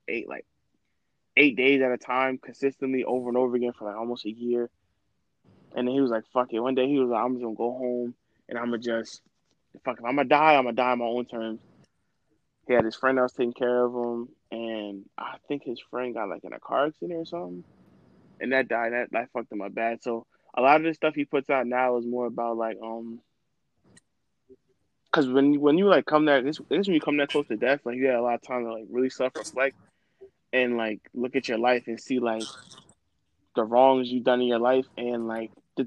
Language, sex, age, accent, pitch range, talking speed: English, male, 20-39, American, 115-130 Hz, 235 wpm